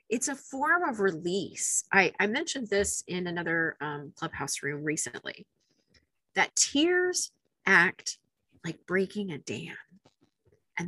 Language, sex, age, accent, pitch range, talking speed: English, female, 30-49, American, 180-260 Hz, 125 wpm